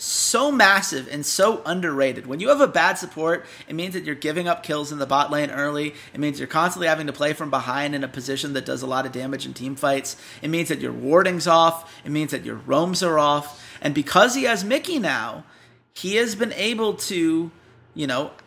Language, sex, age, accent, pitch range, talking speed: English, male, 30-49, American, 145-185 Hz, 225 wpm